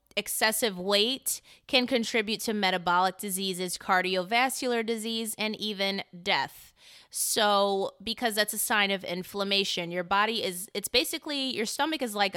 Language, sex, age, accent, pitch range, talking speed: English, female, 20-39, American, 195-250 Hz, 135 wpm